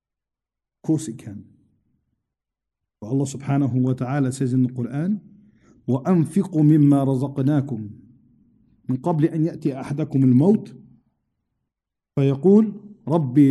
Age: 50-69